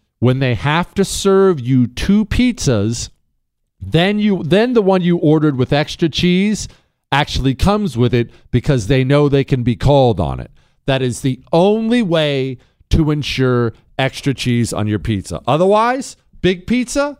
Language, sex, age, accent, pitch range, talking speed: English, male, 40-59, American, 115-165 Hz, 160 wpm